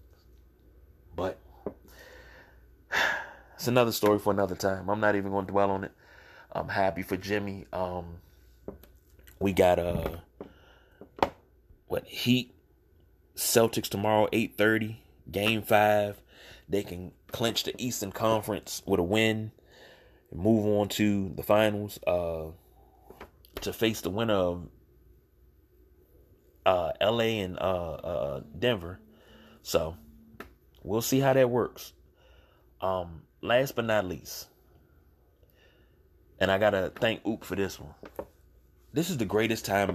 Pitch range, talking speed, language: 80-105 Hz, 120 wpm, English